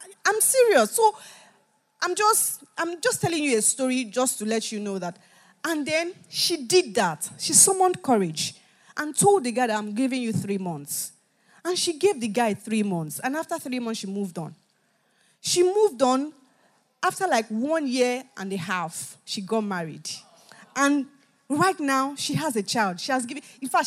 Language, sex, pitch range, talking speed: English, female, 215-320 Hz, 185 wpm